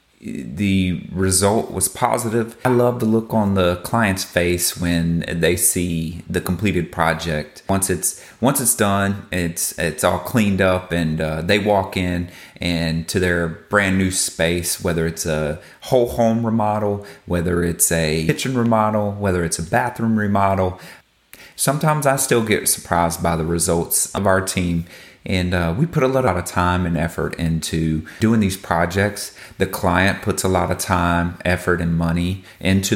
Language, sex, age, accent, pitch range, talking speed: English, male, 30-49, American, 85-100 Hz, 165 wpm